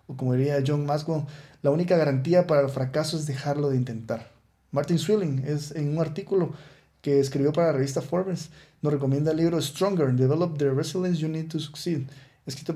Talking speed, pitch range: 185 wpm, 135-170 Hz